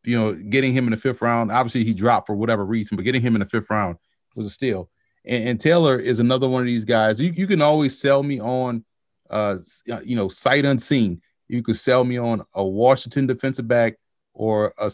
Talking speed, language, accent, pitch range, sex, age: 225 wpm, English, American, 110-130 Hz, male, 30-49